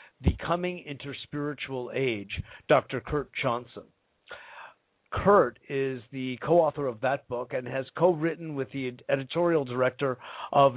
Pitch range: 120-150 Hz